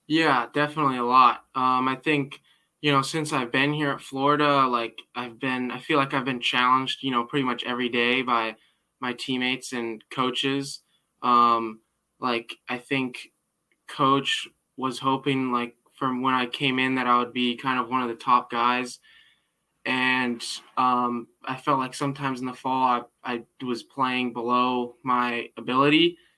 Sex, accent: male, American